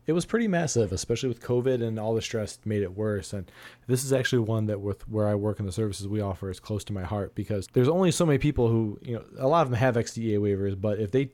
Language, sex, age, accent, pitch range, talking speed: English, male, 20-39, American, 100-120 Hz, 280 wpm